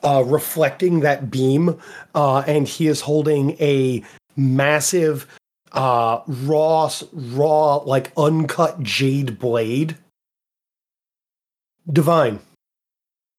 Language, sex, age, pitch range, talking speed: English, male, 30-49, 135-160 Hz, 85 wpm